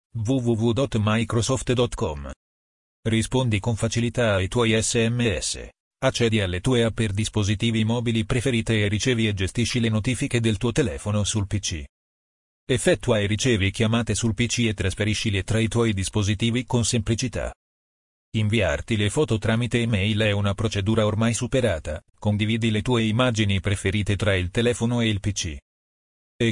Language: Italian